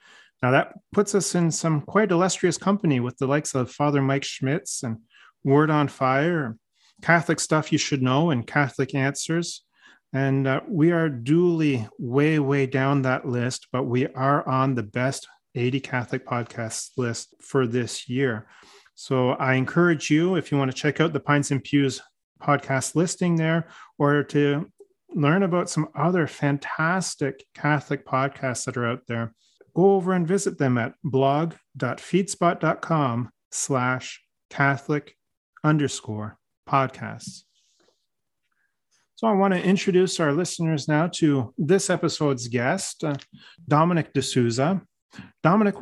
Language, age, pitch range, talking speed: English, 30-49, 130-165 Hz, 140 wpm